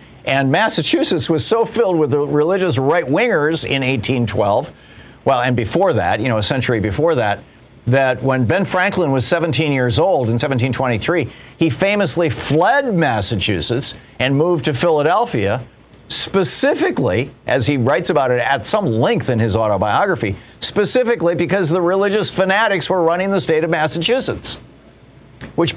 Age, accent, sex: 50-69, American, male